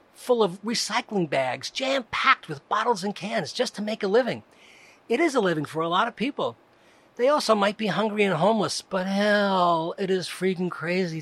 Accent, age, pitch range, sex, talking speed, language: American, 40-59, 170-240 Hz, male, 195 wpm, English